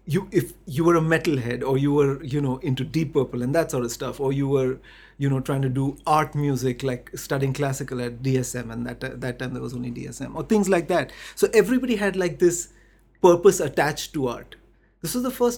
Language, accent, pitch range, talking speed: English, Indian, 130-180 Hz, 230 wpm